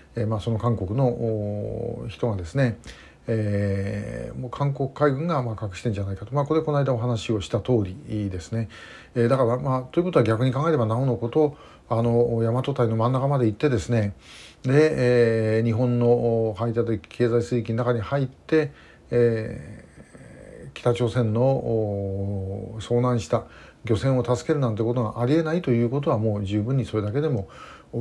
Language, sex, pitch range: Japanese, male, 110-135 Hz